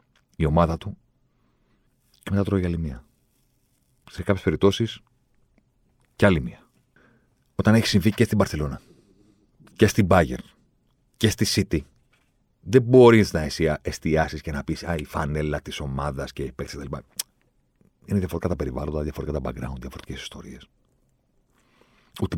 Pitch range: 80-115 Hz